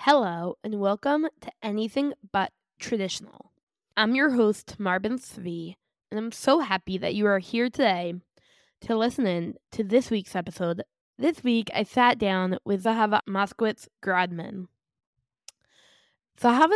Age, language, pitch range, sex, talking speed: 10-29, English, 200-255 Hz, female, 135 wpm